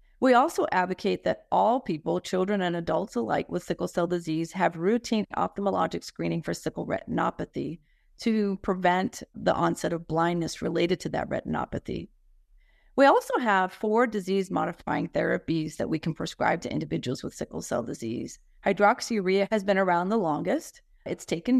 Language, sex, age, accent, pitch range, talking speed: English, female, 30-49, American, 170-225 Hz, 155 wpm